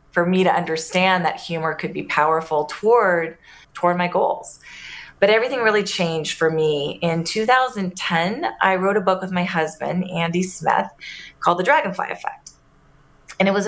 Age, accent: 30-49, American